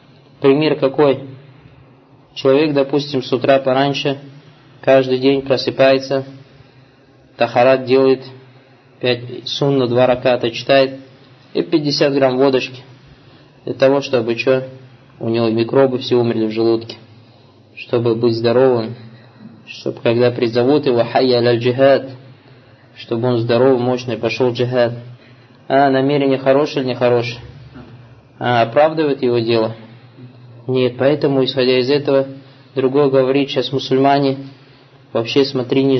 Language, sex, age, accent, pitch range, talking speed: Russian, male, 20-39, native, 125-135 Hz, 115 wpm